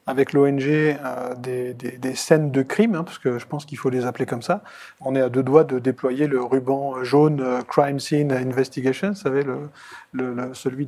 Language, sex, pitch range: French, male, 130-160 Hz